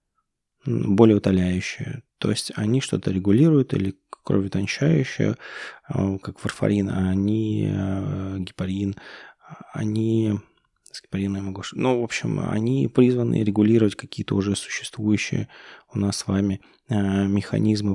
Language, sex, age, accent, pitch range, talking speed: Russian, male, 20-39, native, 95-110 Hz, 105 wpm